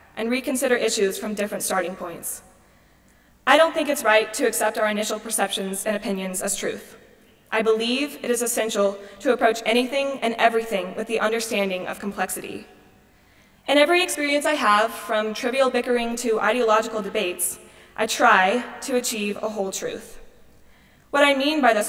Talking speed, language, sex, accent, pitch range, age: 160 wpm, English, female, American, 205-250 Hz, 20-39